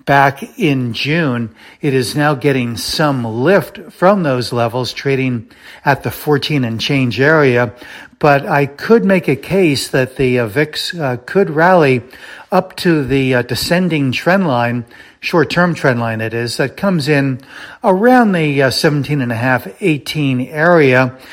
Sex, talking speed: male, 160 wpm